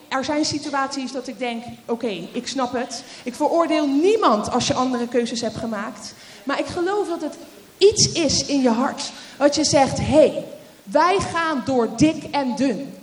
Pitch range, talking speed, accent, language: 255-365 Hz, 180 wpm, Dutch, Dutch